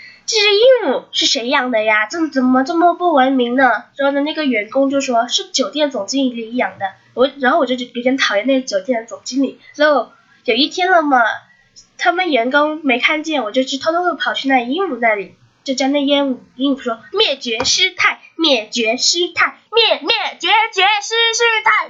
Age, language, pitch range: 10-29, Chinese, 255-360 Hz